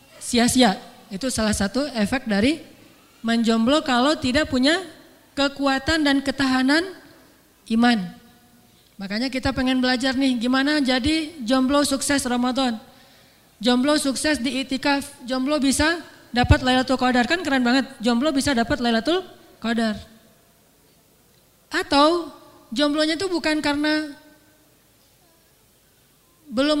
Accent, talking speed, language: native, 105 wpm, Indonesian